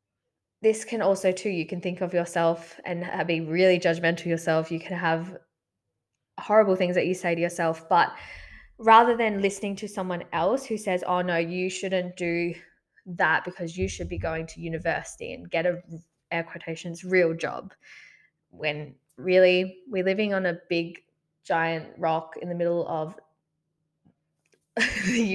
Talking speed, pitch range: 160 wpm, 165-200 Hz